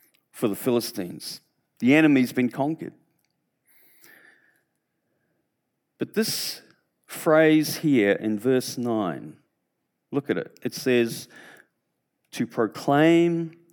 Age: 50-69